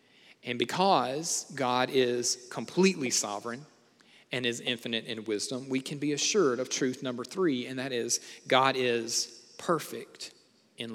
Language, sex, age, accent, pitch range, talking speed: English, male, 40-59, American, 120-145 Hz, 140 wpm